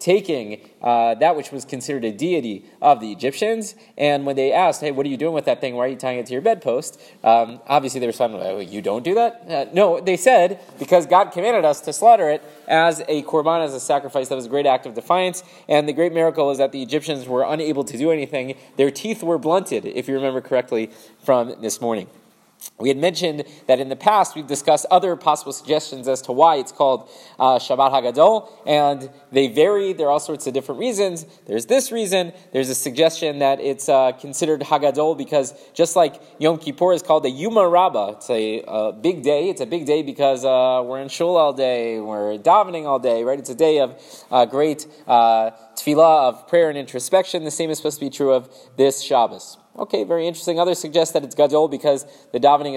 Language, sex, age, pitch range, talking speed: English, male, 20-39, 130-175 Hz, 220 wpm